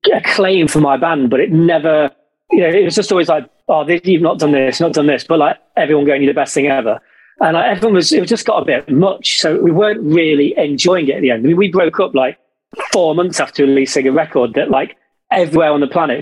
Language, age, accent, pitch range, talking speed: English, 40-59, British, 145-190 Hz, 260 wpm